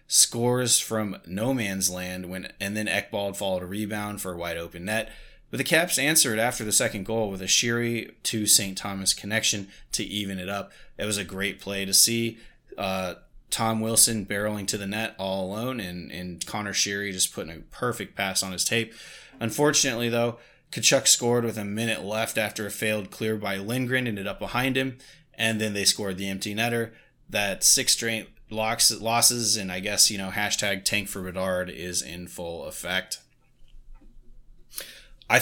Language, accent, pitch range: English, American, 95-115 Hz